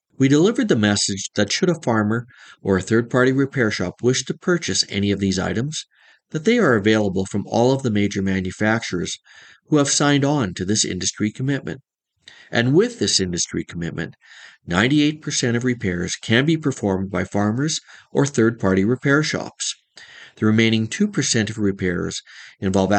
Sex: male